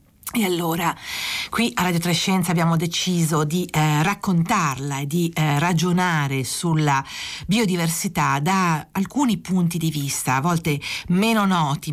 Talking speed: 135 wpm